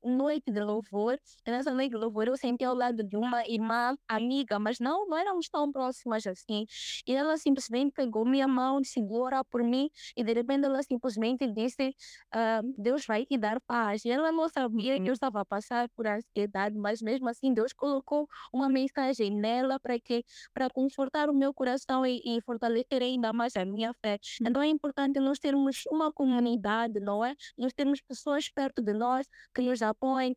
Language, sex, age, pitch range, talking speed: Portuguese, female, 20-39, 230-275 Hz, 190 wpm